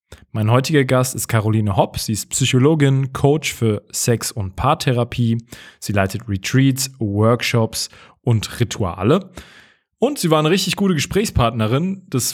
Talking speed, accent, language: 135 wpm, German, German